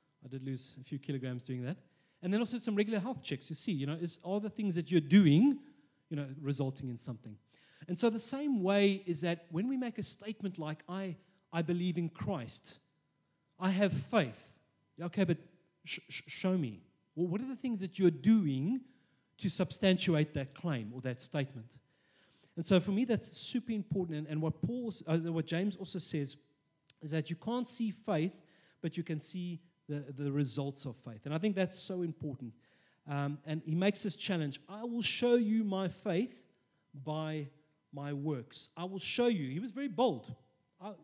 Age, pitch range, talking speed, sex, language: 30-49, 145-195 Hz, 195 wpm, male, English